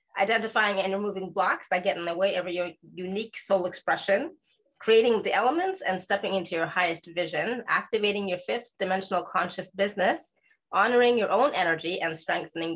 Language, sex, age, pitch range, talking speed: English, female, 20-39, 175-210 Hz, 165 wpm